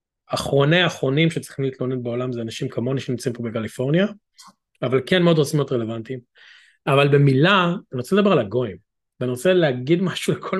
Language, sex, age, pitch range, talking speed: Hebrew, male, 30-49, 125-165 Hz, 165 wpm